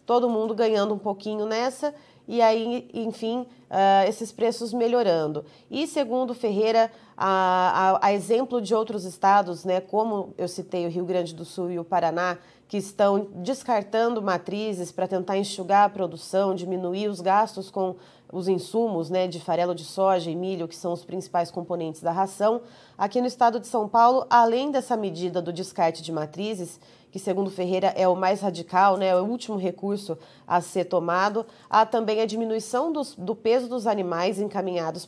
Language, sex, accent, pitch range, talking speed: Portuguese, female, Brazilian, 185-230 Hz, 175 wpm